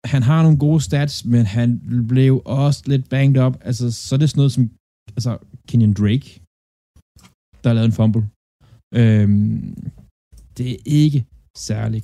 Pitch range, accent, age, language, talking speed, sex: 105-130 Hz, native, 20-39, Danish, 165 wpm, male